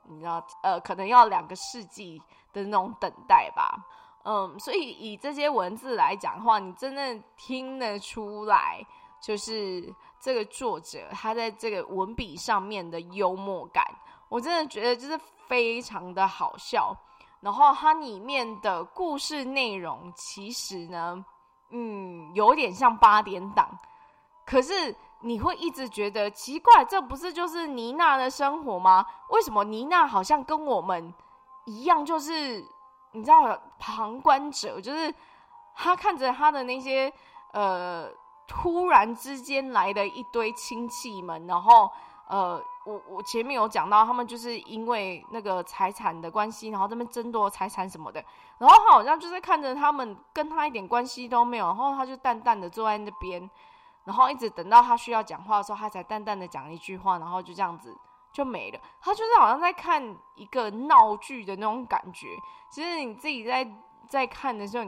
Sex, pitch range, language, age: female, 205-320 Hz, Chinese, 20-39